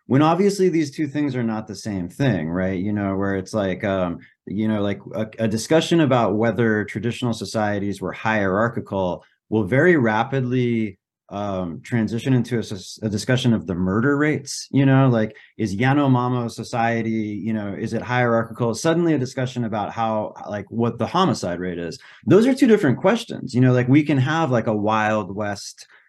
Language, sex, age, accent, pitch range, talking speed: English, male, 30-49, American, 105-125 Hz, 180 wpm